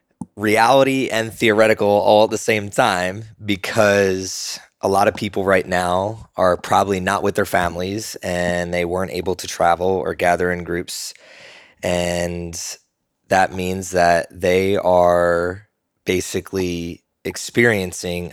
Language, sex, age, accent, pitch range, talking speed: English, male, 20-39, American, 90-105 Hz, 130 wpm